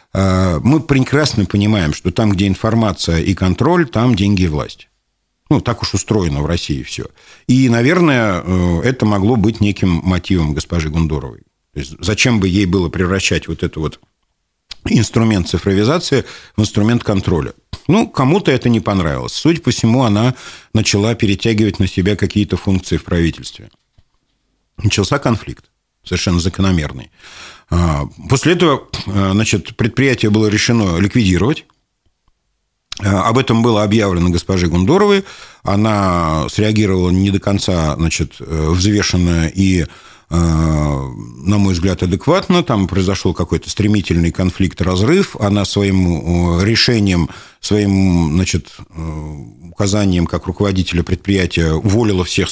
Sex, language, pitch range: male, Russian, 85-110 Hz